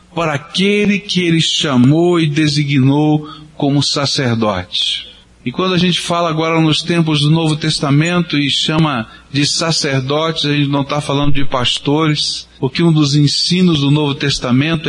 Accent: Brazilian